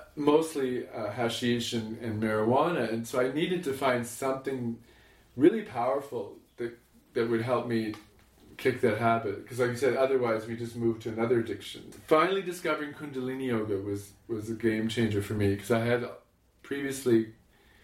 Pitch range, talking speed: 110-130 Hz, 160 wpm